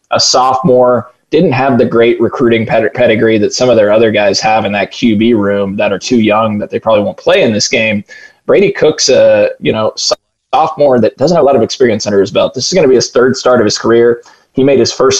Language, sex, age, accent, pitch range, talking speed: English, male, 20-39, American, 105-125 Hz, 255 wpm